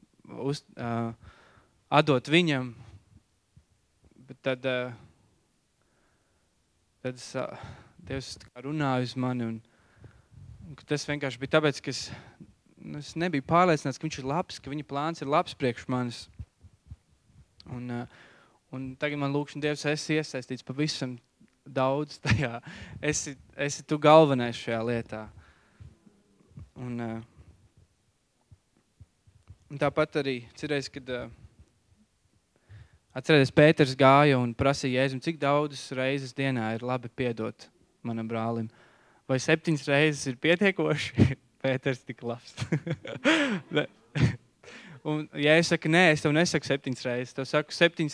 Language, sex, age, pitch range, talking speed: English, male, 20-39, 115-150 Hz, 95 wpm